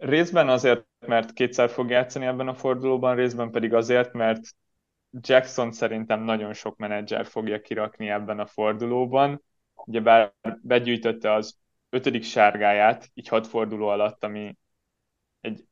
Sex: male